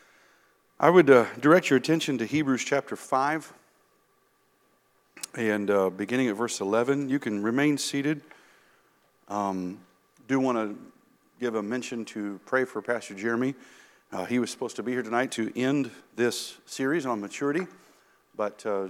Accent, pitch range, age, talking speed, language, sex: American, 110-140 Hz, 50-69, 150 wpm, English, male